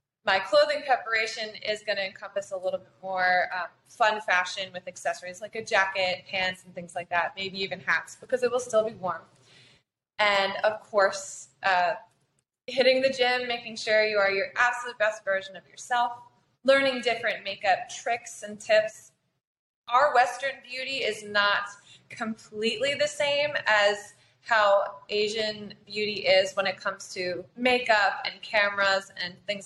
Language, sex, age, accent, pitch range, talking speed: English, female, 20-39, American, 190-245 Hz, 160 wpm